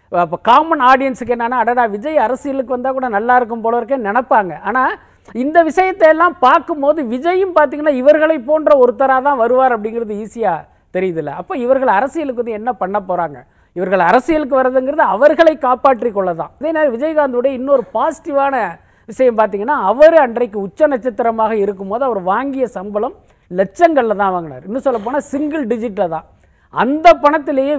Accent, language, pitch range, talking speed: native, Tamil, 210-290 Hz, 145 wpm